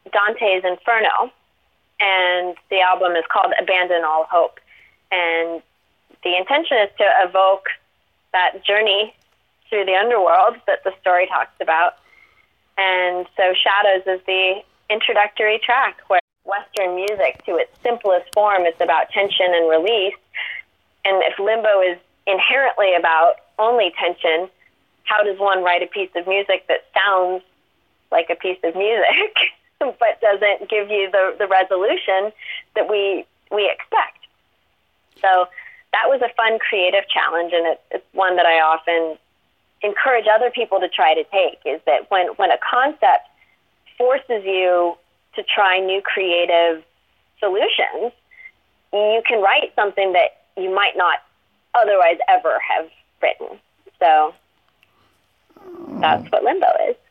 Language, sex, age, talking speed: English, female, 30-49, 135 wpm